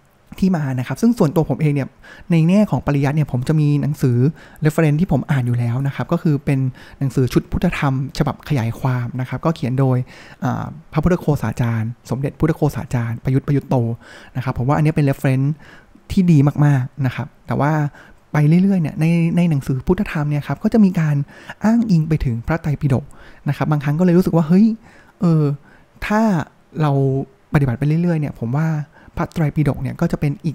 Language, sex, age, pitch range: Thai, male, 20-39, 135-170 Hz